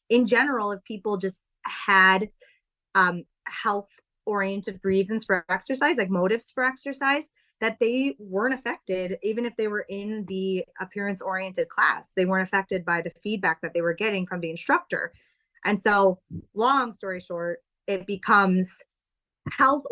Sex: female